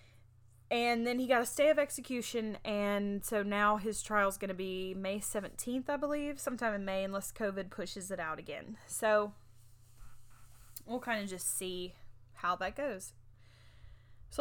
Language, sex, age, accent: English, female, 20-39, American